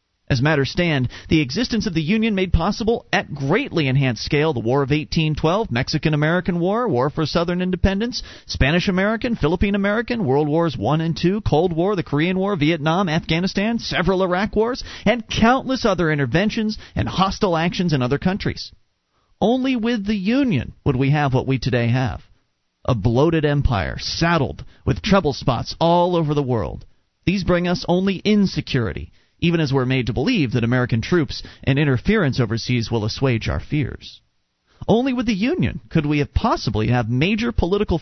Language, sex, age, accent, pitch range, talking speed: English, male, 40-59, American, 135-205 Hz, 165 wpm